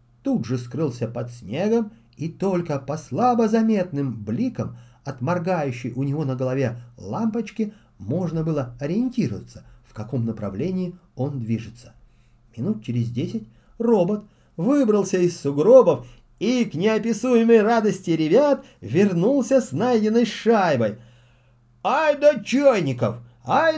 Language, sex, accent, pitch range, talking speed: Russian, male, native, 120-195 Hz, 115 wpm